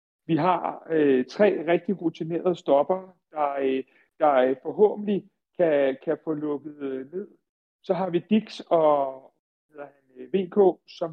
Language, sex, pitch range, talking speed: Danish, male, 150-185 Hz, 135 wpm